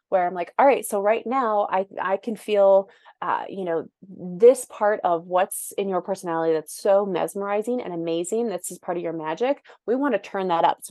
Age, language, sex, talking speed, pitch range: 20-39, English, female, 220 wpm, 180-225 Hz